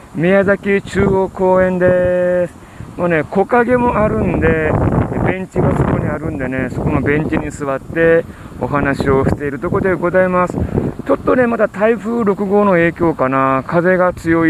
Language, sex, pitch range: Japanese, male, 130-170 Hz